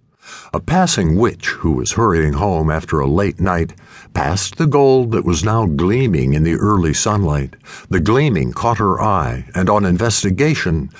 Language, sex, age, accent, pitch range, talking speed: English, male, 60-79, American, 85-120 Hz, 165 wpm